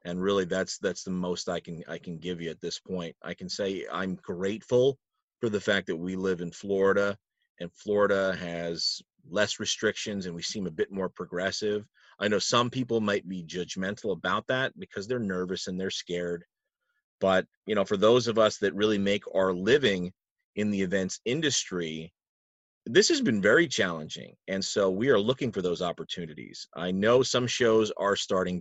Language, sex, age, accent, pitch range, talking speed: English, male, 30-49, American, 90-110 Hz, 190 wpm